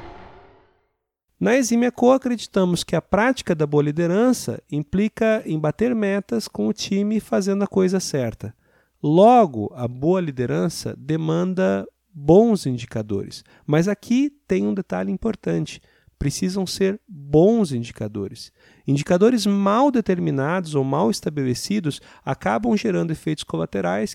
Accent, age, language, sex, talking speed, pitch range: Brazilian, 40-59, Portuguese, male, 120 wpm, 130-200 Hz